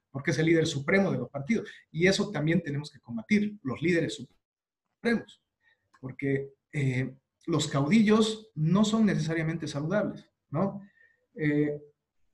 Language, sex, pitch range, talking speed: Spanish, male, 140-195 Hz, 130 wpm